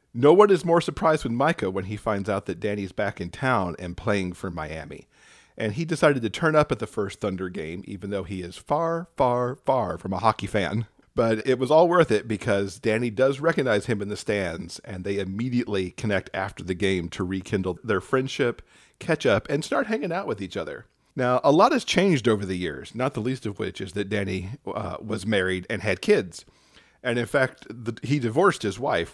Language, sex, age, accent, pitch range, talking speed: English, male, 40-59, American, 95-125 Hz, 215 wpm